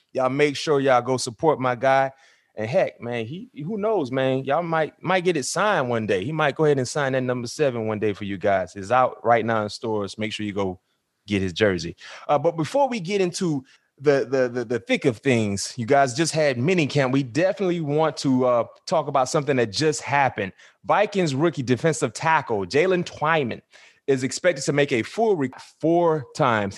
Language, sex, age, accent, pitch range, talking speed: English, male, 30-49, American, 115-150 Hz, 210 wpm